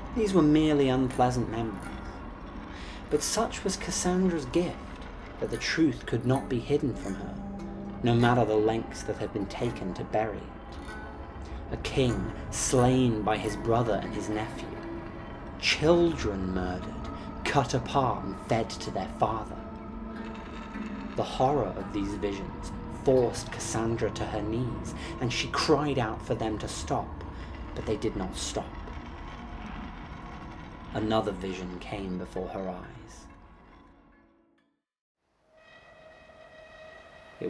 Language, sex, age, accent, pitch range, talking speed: English, male, 30-49, British, 100-150 Hz, 125 wpm